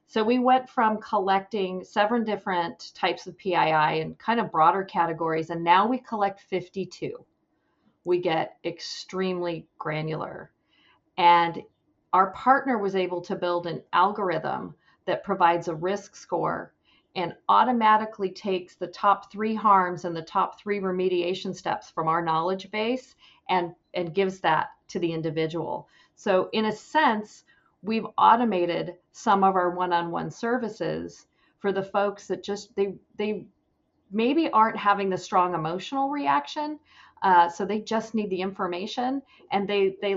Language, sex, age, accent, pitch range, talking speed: English, female, 40-59, American, 175-215 Hz, 145 wpm